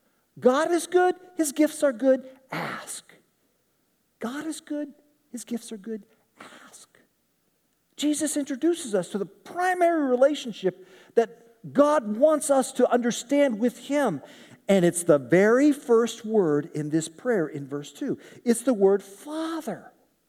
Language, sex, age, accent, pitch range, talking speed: English, male, 50-69, American, 195-285 Hz, 140 wpm